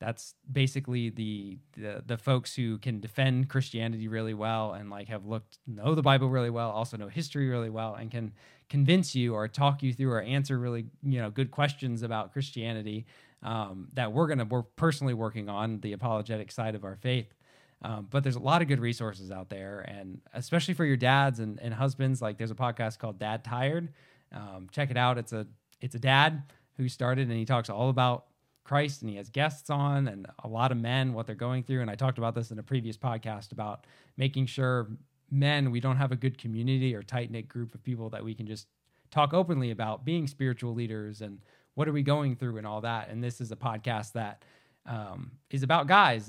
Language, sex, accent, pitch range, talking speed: English, male, American, 110-135 Hz, 215 wpm